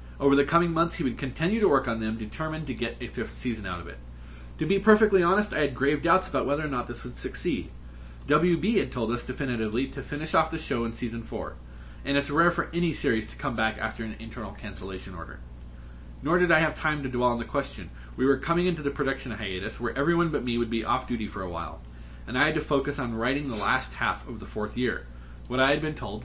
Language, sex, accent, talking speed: English, male, American, 250 wpm